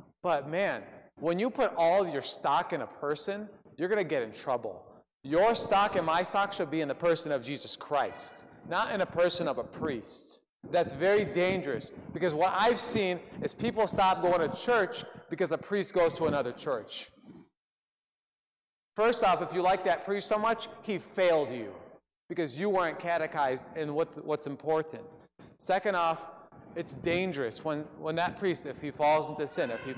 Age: 30-49